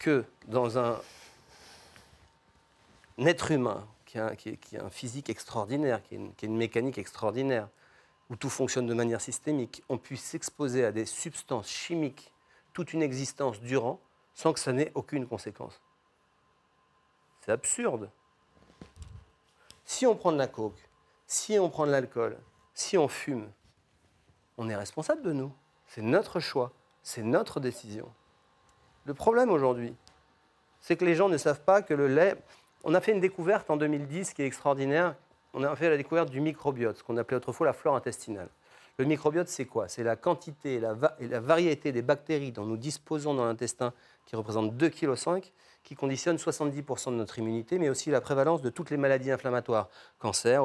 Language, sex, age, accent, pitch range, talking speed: French, male, 40-59, French, 115-150 Hz, 165 wpm